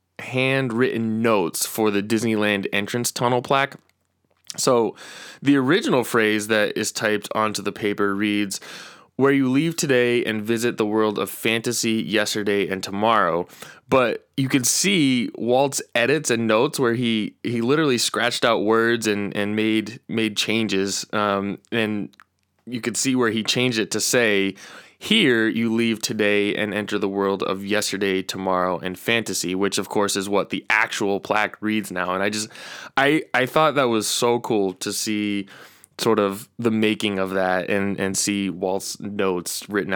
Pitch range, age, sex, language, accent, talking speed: 100-120 Hz, 20-39, male, English, American, 165 wpm